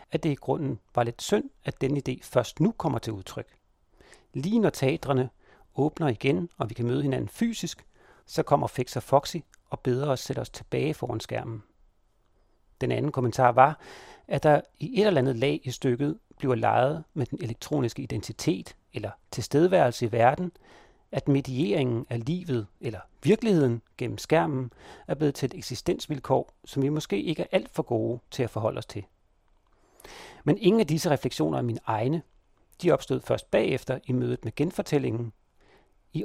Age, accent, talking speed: 40-59, native, 175 wpm